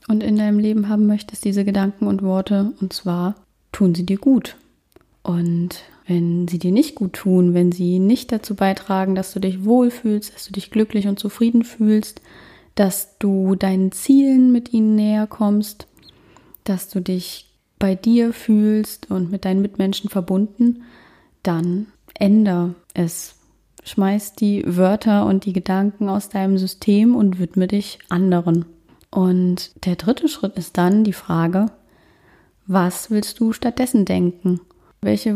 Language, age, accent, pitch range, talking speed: German, 30-49, German, 180-210 Hz, 150 wpm